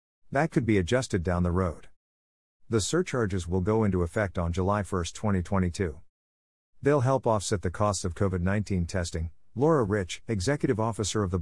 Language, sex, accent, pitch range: English, male, American, 90-115 Hz